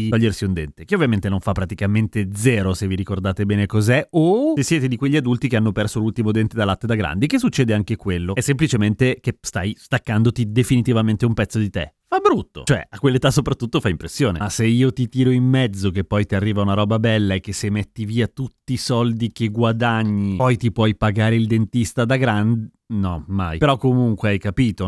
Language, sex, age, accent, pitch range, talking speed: Italian, male, 30-49, native, 110-140 Hz, 215 wpm